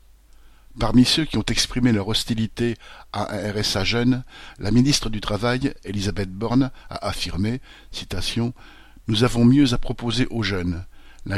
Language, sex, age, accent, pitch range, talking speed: French, male, 50-69, French, 100-125 Hz, 150 wpm